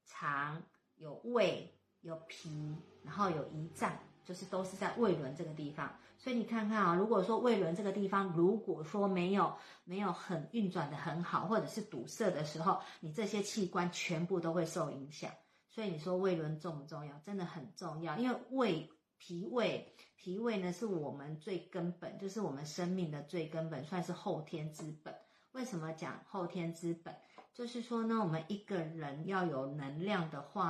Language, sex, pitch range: Chinese, female, 160-200 Hz